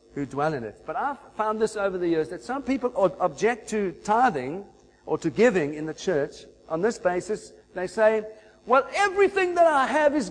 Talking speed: 200 wpm